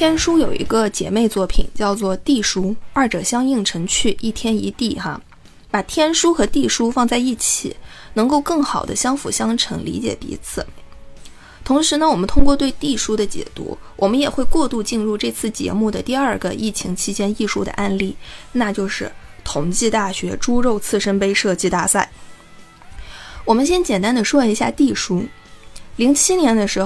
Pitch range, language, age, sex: 195-265 Hz, Chinese, 20-39, female